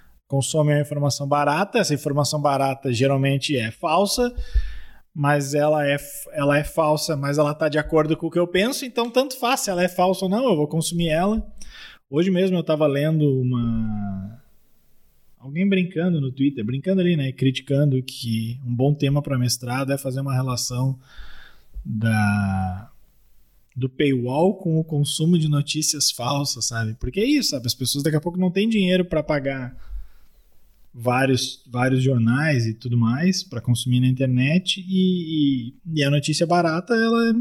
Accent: Brazilian